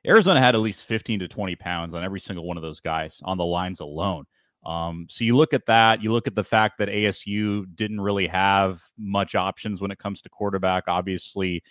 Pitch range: 95-115 Hz